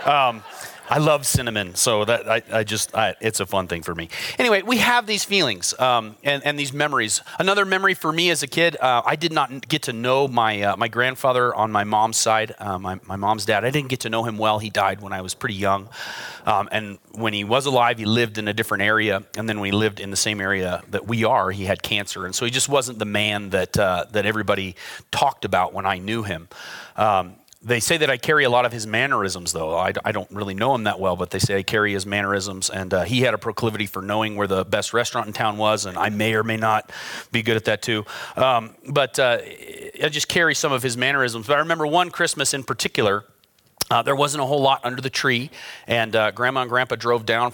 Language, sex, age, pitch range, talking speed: English, male, 30-49, 100-130 Hz, 250 wpm